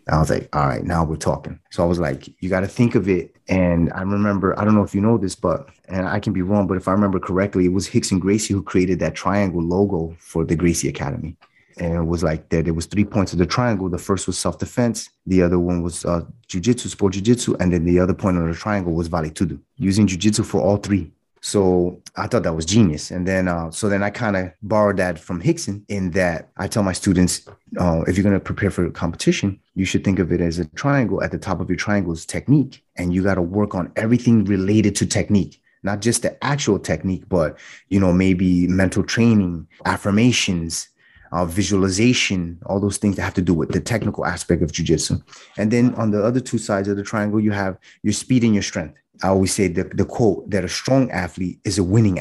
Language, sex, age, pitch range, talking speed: English, male, 30-49, 90-110 Hz, 240 wpm